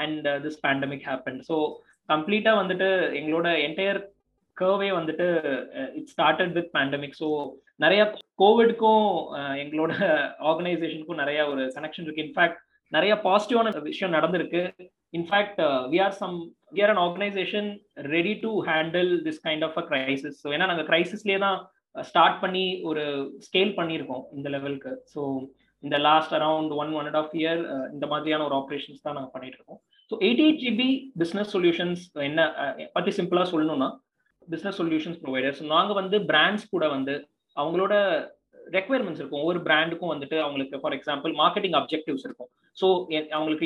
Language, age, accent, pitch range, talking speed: Tamil, 20-39, native, 150-195 Hz, 160 wpm